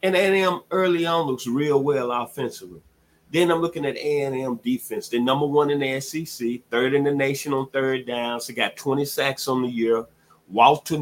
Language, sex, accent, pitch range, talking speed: English, male, American, 115-145 Hz, 195 wpm